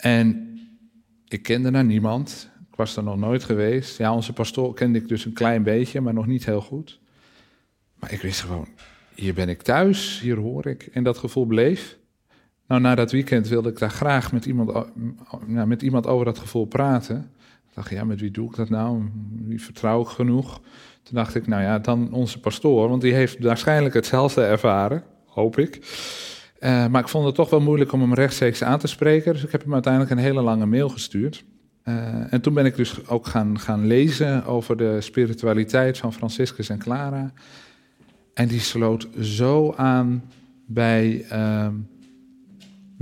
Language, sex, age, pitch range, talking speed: Dutch, male, 40-59, 115-130 Hz, 185 wpm